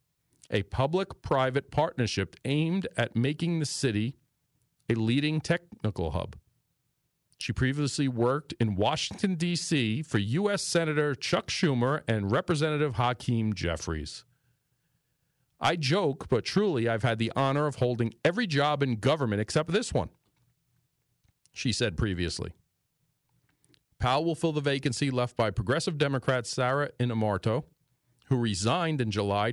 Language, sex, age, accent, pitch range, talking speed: English, male, 40-59, American, 115-140 Hz, 125 wpm